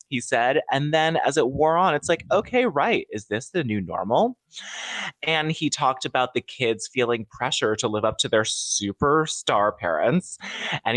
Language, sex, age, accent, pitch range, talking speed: English, male, 20-39, American, 115-160 Hz, 180 wpm